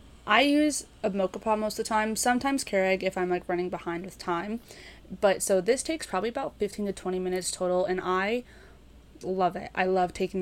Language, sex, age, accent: English, female, 20-39, American